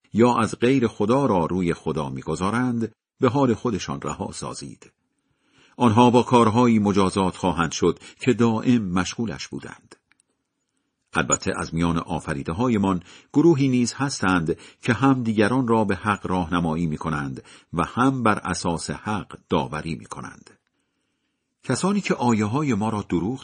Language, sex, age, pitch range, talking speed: Persian, male, 50-69, 90-125 Hz, 135 wpm